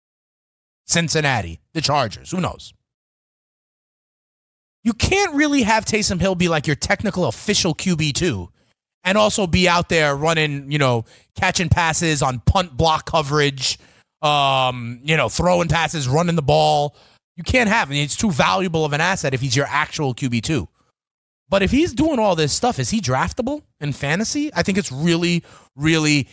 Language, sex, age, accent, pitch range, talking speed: English, male, 30-49, American, 130-170 Hz, 160 wpm